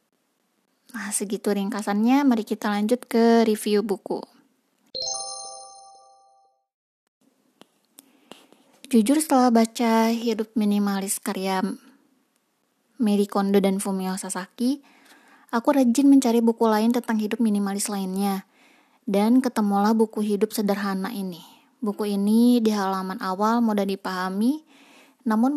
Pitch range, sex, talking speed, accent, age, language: 200-255 Hz, female, 100 wpm, native, 20-39, Indonesian